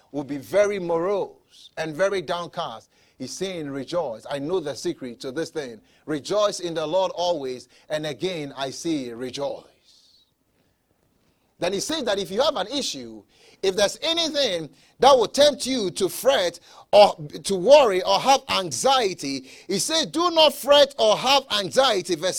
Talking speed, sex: 160 wpm, male